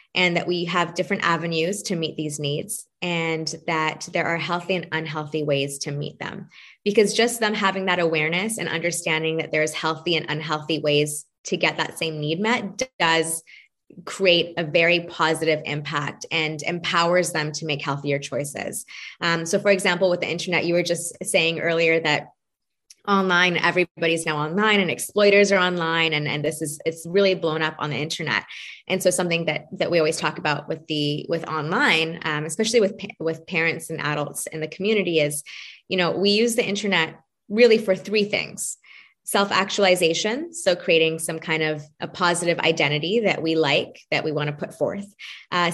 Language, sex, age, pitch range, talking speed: English, female, 20-39, 155-185 Hz, 180 wpm